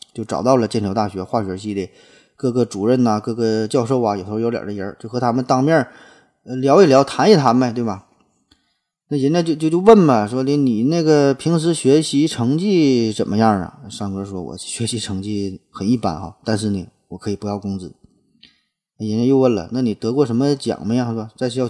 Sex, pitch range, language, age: male, 100-125 Hz, Chinese, 20-39